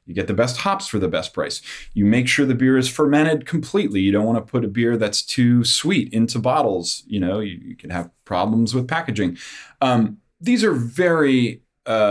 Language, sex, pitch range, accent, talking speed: English, male, 105-150 Hz, American, 215 wpm